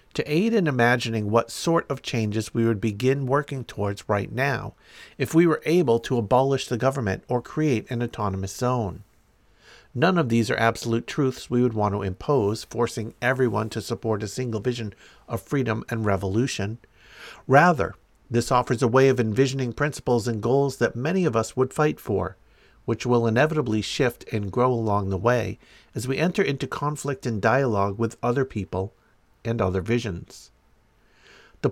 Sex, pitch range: male, 110-135 Hz